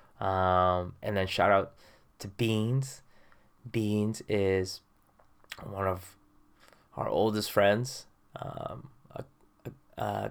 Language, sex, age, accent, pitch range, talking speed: English, male, 20-39, American, 105-115 Hz, 105 wpm